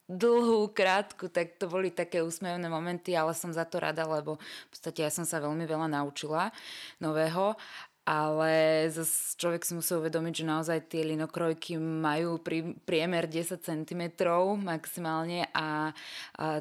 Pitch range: 155-170 Hz